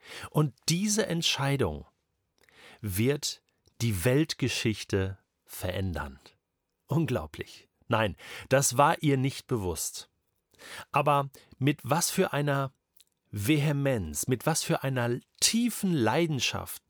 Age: 40-59